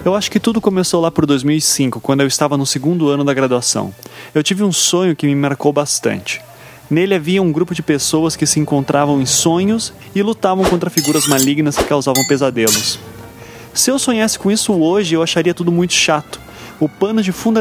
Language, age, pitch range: Portuguese, 20-39, 140-185 Hz